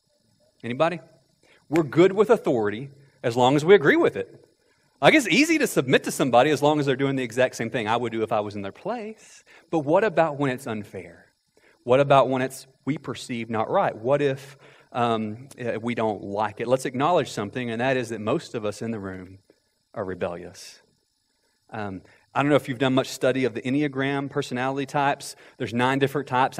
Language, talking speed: English, 210 wpm